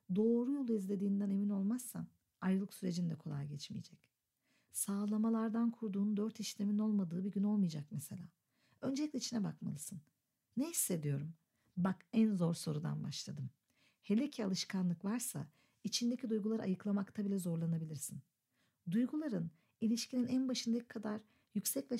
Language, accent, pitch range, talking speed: Turkish, native, 175-220 Hz, 120 wpm